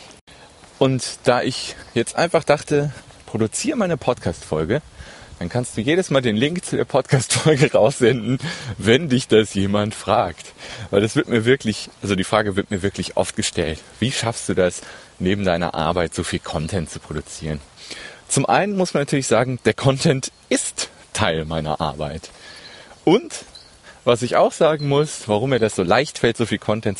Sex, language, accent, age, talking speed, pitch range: male, German, German, 30-49, 170 wpm, 95-140 Hz